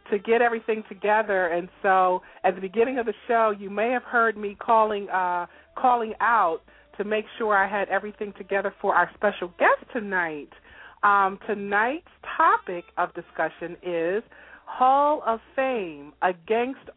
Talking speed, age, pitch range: 150 wpm, 40-59, 180-230 Hz